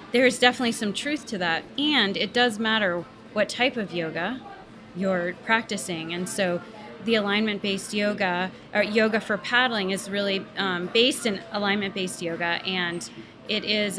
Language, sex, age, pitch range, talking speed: English, female, 30-49, 190-225 Hz, 155 wpm